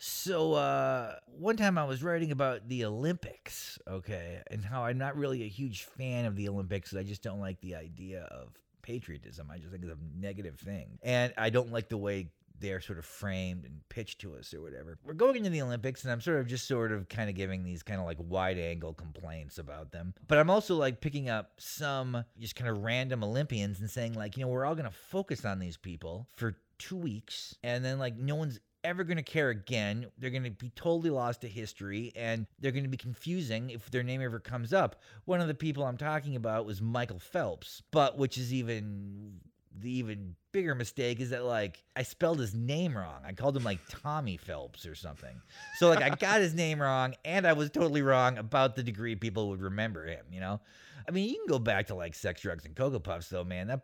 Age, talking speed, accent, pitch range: 30-49, 225 wpm, American, 95-135 Hz